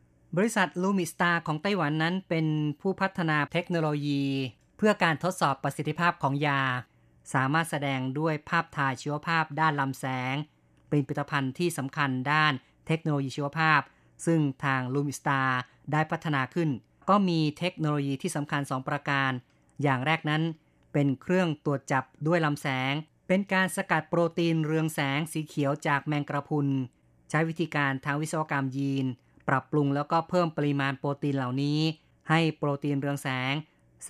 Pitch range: 135-160 Hz